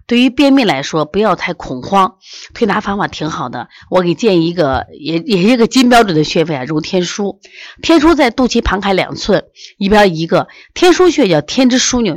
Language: Chinese